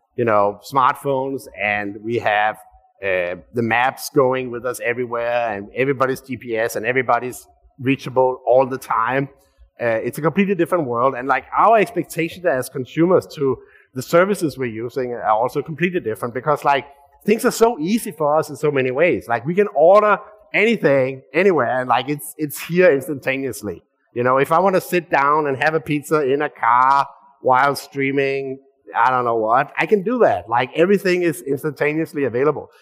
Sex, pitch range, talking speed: male, 130-175 Hz, 175 wpm